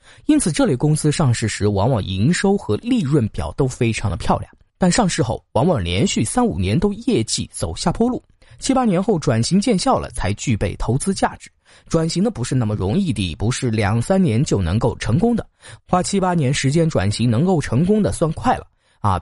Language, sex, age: Chinese, male, 20-39